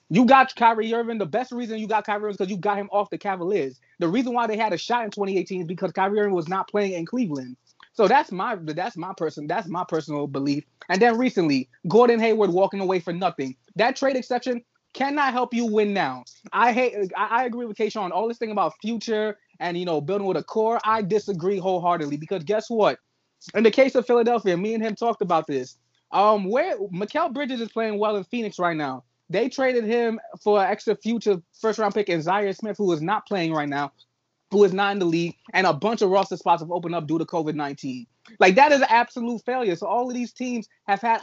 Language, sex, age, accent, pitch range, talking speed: English, male, 20-39, American, 175-225 Hz, 235 wpm